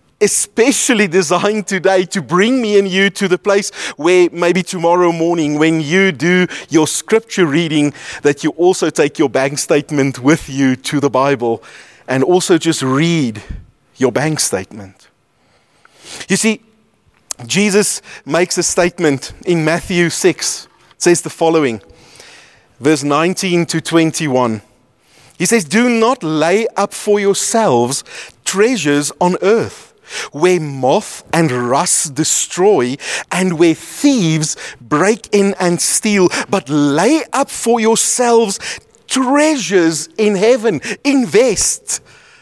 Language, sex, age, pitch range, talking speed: English, male, 30-49, 145-195 Hz, 125 wpm